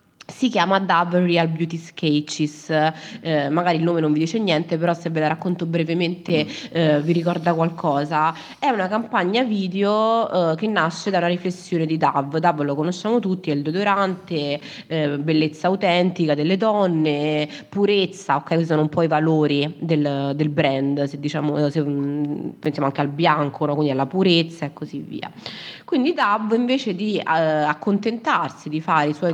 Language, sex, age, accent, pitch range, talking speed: Italian, female, 20-39, native, 155-200 Hz, 170 wpm